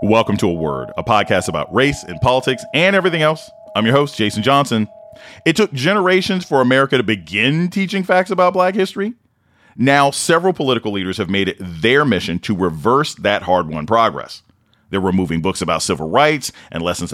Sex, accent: male, American